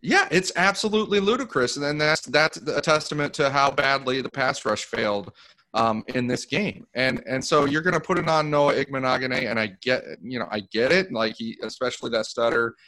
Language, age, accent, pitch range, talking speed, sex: English, 30-49, American, 110-145 Hz, 210 wpm, male